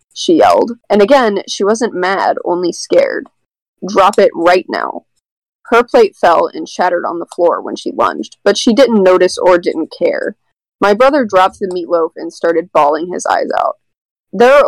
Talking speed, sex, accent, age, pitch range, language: 180 wpm, female, American, 20-39, 185-280 Hz, English